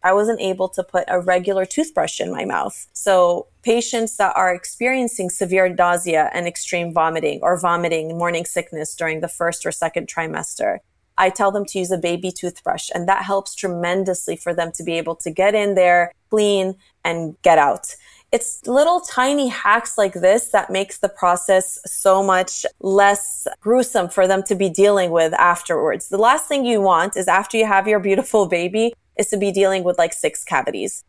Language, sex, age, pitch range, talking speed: English, female, 20-39, 175-195 Hz, 185 wpm